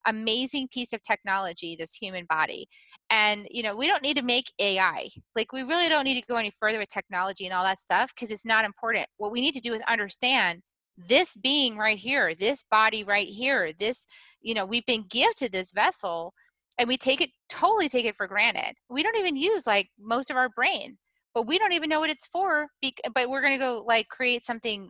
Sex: female